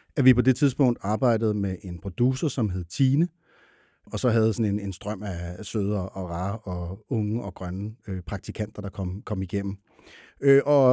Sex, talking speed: male, 180 wpm